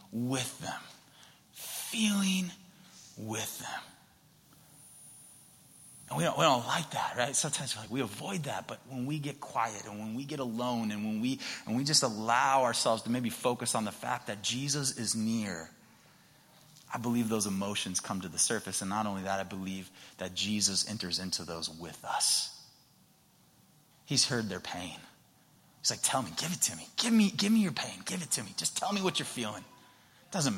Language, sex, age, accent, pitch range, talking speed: English, male, 30-49, American, 105-140 Hz, 190 wpm